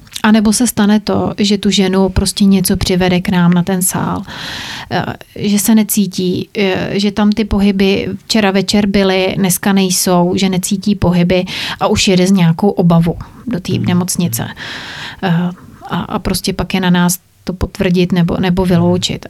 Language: Czech